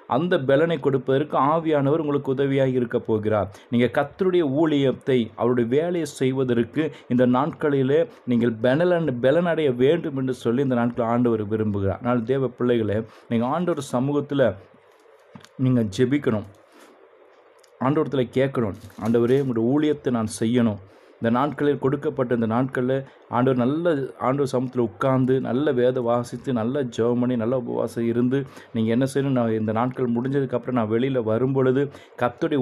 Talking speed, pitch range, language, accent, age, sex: 130 wpm, 120-145 Hz, Tamil, native, 30-49, male